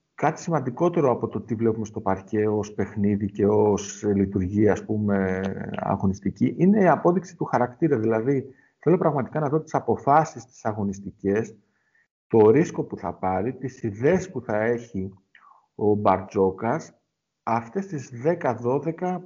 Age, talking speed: 50-69, 140 wpm